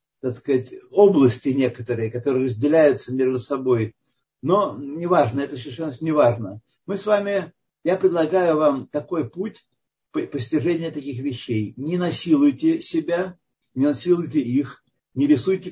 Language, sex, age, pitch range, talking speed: Russian, male, 60-79, 125-170 Hz, 130 wpm